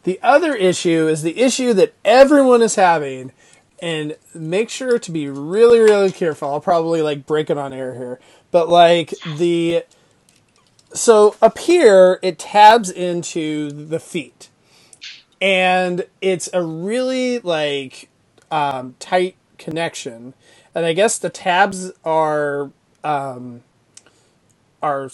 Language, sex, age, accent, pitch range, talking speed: English, male, 30-49, American, 145-185 Hz, 125 wpm